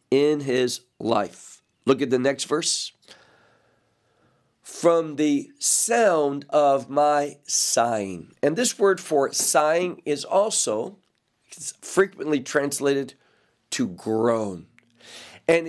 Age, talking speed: 50-69, 105 wpm